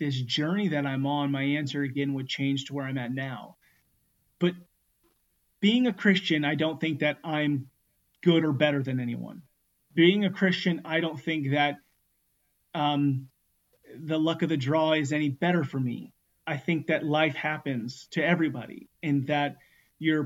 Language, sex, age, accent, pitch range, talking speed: English, male, 30-49, American, 145-185 Hz, 170 wpm